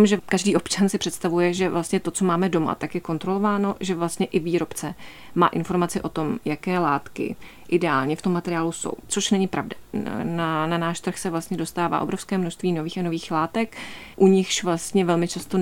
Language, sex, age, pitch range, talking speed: Czech, female, 30-49, 160-180 Hz, 195 wpm